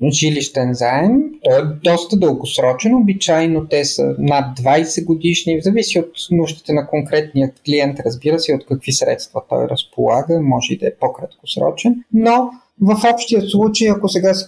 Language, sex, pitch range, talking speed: Bulgarian, male, 140-195 Hz, 155 wpm